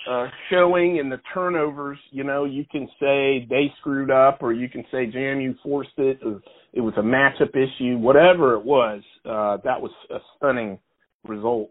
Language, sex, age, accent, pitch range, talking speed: English, male, 40-59, American, 120-165 Hz, 175 wpm